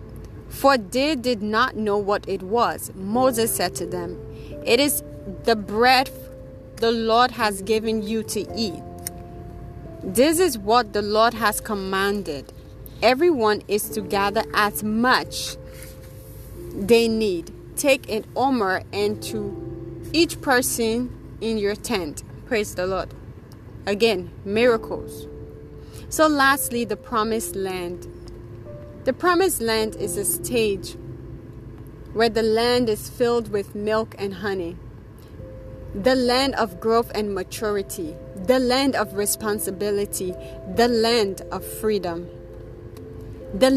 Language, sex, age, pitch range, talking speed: English, female, 30-49, 180-235 Hz, 120 wpm